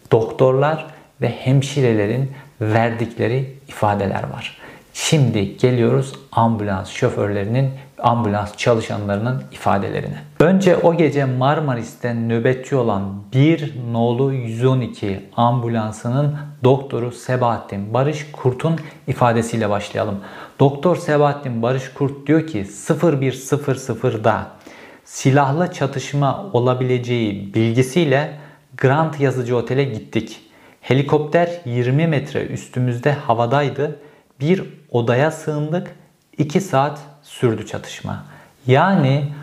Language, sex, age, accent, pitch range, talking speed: Turkish, male, 50-69, native, 120-150 Hz, 85 wpm